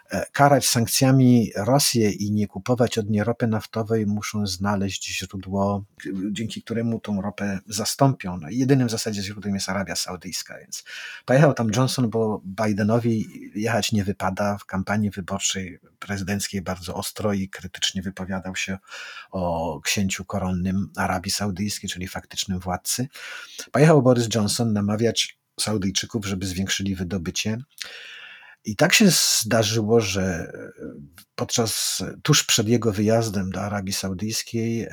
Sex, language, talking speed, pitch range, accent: male, Polish, 125 wpm, 95-115 Hz, native